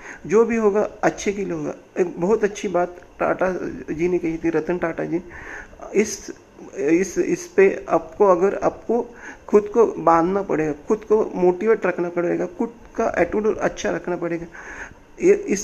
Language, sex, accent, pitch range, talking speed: Hindi, male, native, 180-220 Hz, 160 wpm